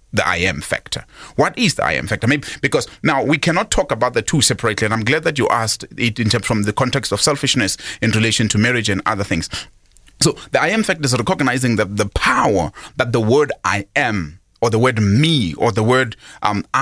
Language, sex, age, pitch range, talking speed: English, male, 30-49, 110-145 Hz, 230 wpm